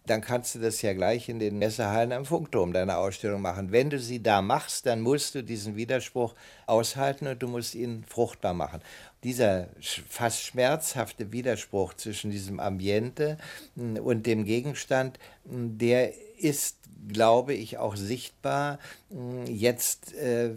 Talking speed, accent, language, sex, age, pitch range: 140 wpm, German, German, male, 60-79, 110-130 Hz